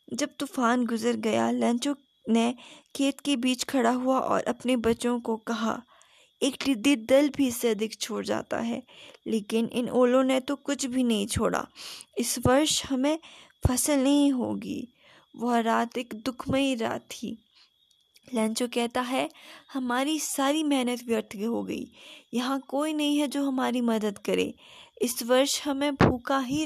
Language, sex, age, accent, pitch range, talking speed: Hindi, female, 20-39, native, 230-275 Hz, 155 wpm